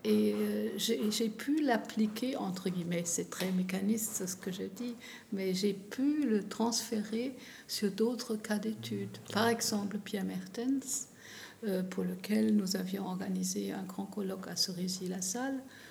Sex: female